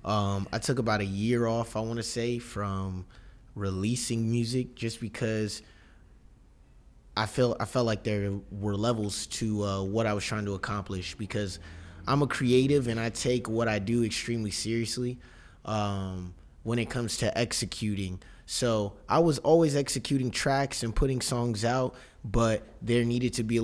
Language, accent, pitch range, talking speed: English, American, 105-120 Hz, 170 wpm